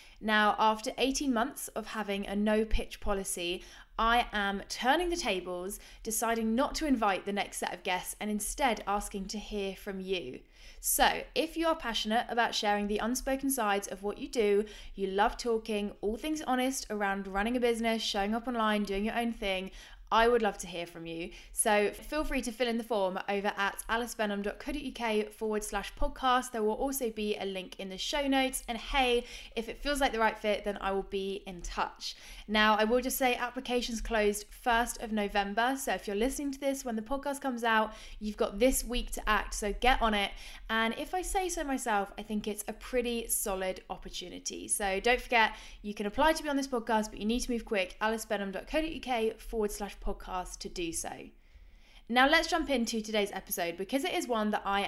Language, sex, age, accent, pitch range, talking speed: English, female, 20-39, British, 195-245 Hz, 205 wpm